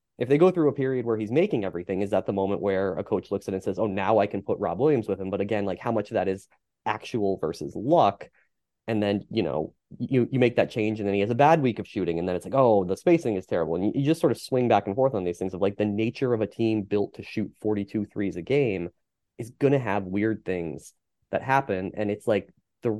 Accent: American